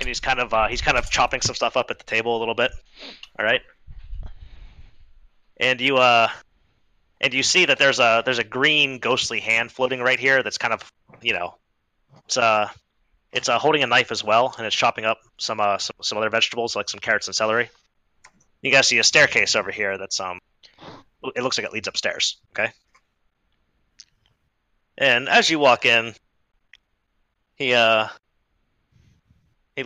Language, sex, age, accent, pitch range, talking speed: English, male, 30-49, American, 110-160 Hz, 180 wpm